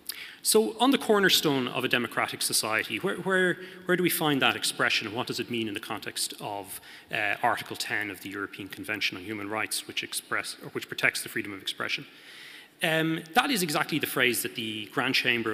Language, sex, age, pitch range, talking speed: English, male, 30-49, 115-180 Hz, 195 wpm